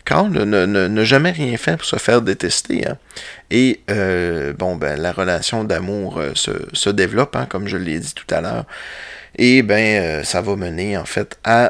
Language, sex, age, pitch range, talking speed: French, male, 30-49, 95-125 Hz, 190 wpm